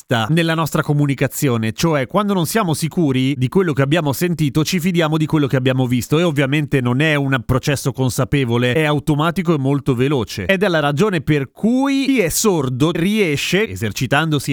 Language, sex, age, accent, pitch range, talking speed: Italian, male, 30-49, native, 135-190 Hz, 180 wpm